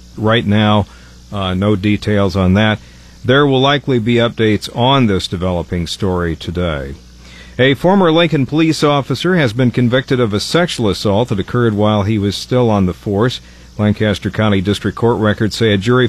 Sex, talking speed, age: male, 170 wpm, 50-69